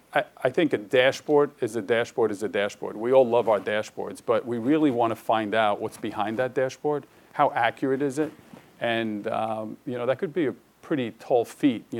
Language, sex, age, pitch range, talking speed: English, male, 40-59, 105-135 Hz, 210 wpm